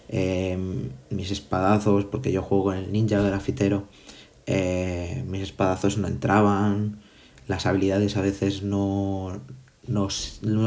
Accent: Spanish